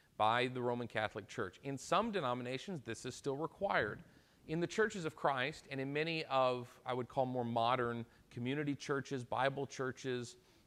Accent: American